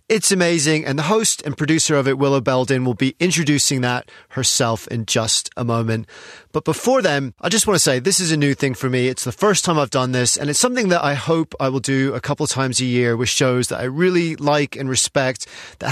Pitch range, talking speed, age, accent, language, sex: 125-160 Hz, 250 wpm, 30-49, British, English, male